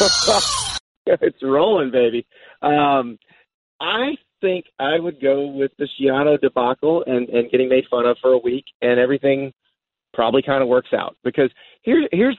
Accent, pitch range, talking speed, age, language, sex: American, 125-180 Hz, 150 wpm, 40-59, English, male